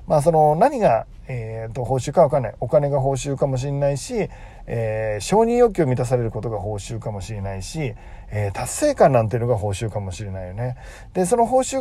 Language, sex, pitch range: Japanese, male, 120-180 Hz